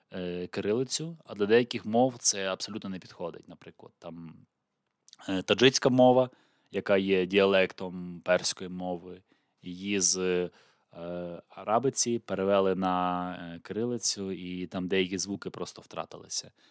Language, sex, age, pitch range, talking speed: Ukrainian, male, 20-39, 90-120 Hz, 110 wpm